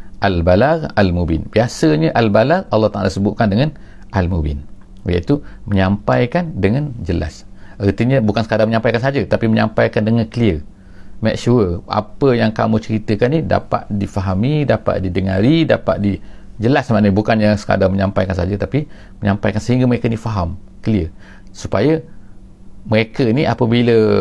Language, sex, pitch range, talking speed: English, male, 95-115 Hz, 125 wpm